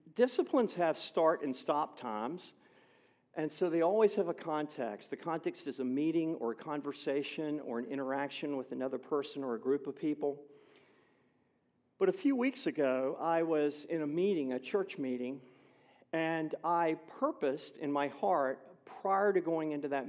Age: 50-69